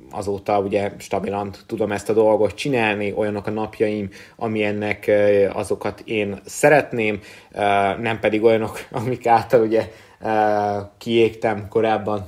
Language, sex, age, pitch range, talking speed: Hungarian, male, 20-39, 105-125 Hz, 110 wpm